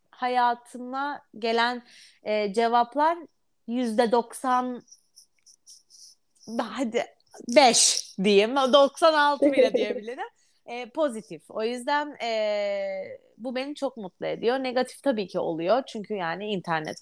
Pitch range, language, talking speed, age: 185-265 Hz, Turkish, 100 wpm, 30-49